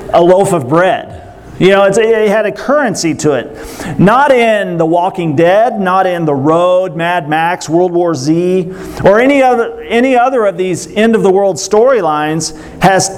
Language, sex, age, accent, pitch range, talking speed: English, male, 40-59, American, 165-220 Hz, 185 wpm